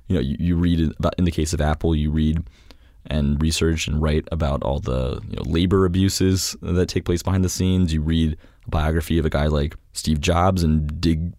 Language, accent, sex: English, American, male